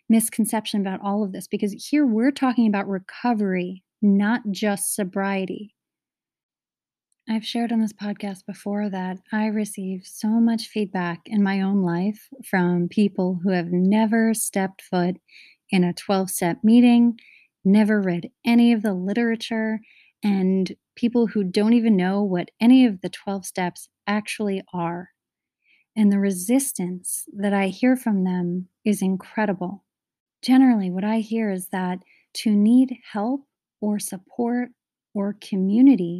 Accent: American